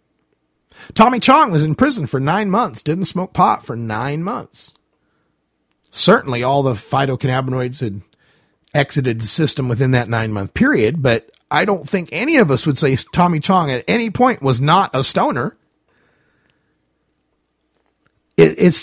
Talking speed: 145 wpm